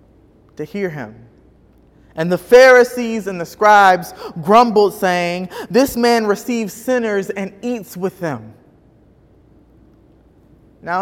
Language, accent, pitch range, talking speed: English, American, 180-230 Hz, 110 wpm